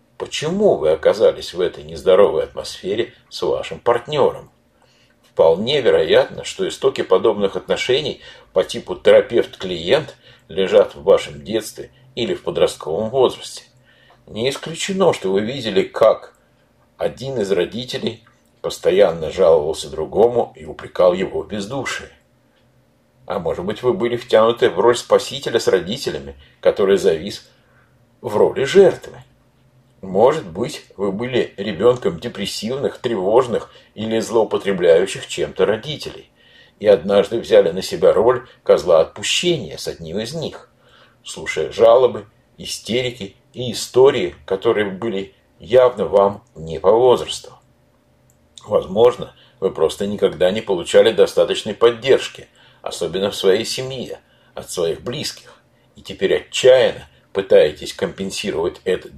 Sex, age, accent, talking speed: male, 60-79, native, 115 wpm